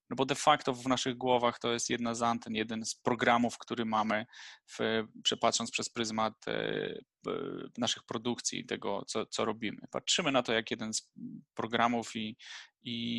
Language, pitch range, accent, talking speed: Polish, 110-130 Hz, native, 160 wpm